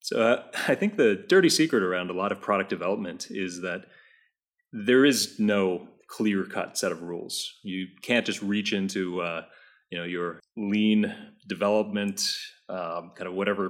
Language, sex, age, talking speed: English, male, 30-49, 165 wpm